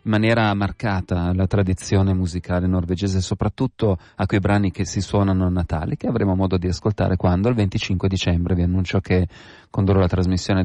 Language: Italian